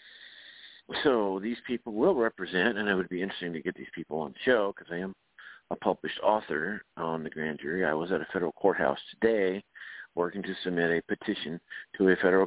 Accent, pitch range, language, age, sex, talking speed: American, 90-115 Hz, English, 50-69, male, 200 wpm